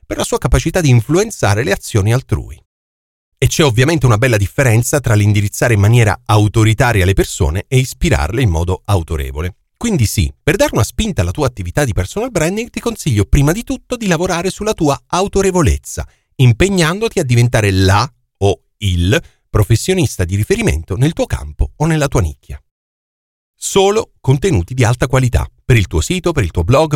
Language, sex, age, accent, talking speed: Italian, male, 40-59, native, 175 wpm